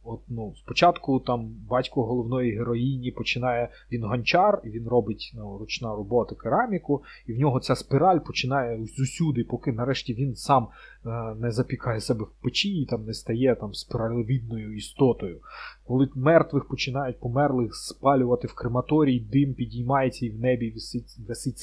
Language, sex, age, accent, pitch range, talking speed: Ukrainian, male, 20-39, native, 115-135 Hz, 145 wpm